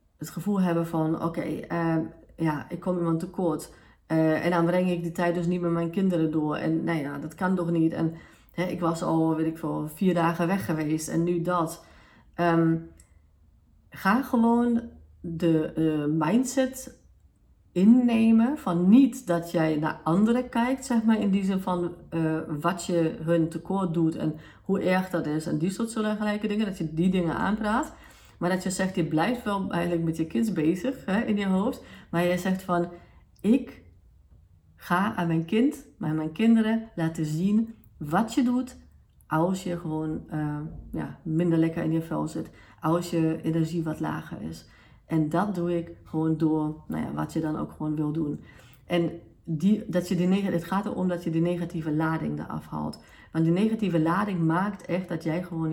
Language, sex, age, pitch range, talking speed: Dutch, female, 40-59, 160-190 Hz, 195 wpm